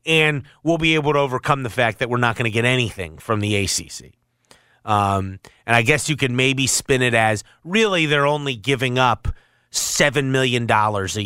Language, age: English, 30-49